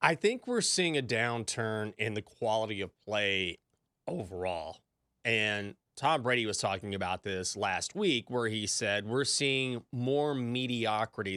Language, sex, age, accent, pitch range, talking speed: English, male, 30-49, American, 105-140 Hz, 150 wpm